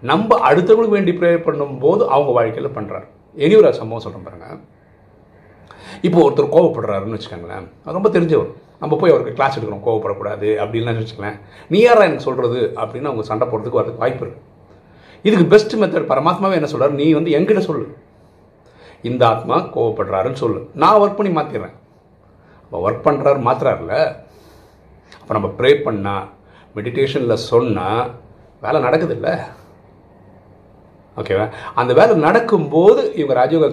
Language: Tamil